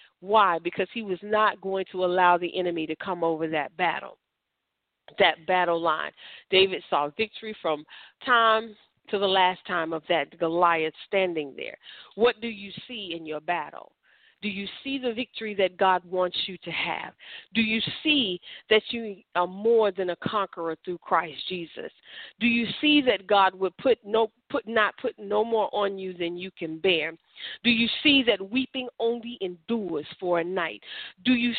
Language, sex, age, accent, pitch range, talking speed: English, female, 40-59, American, 180-230 Hz, 180 wpm